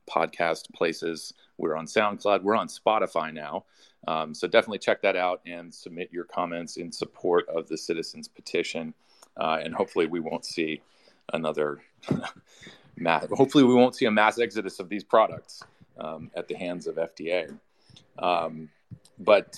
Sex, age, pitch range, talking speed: male, 30-49, 85-120 Hz, 155 wpm